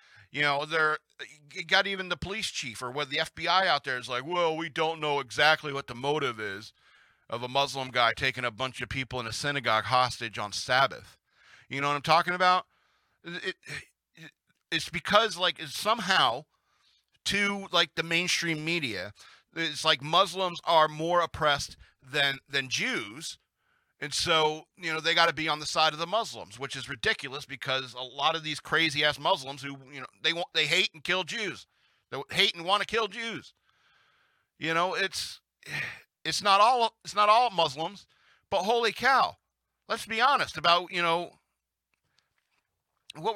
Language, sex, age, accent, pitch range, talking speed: English, male, 40-59, American, 140-190 Hz, 180 wpm